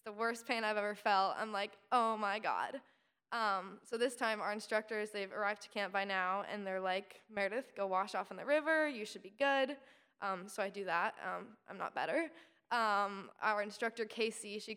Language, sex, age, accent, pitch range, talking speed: English, female, 10-29, American, 200-230 Hz, 205 wpm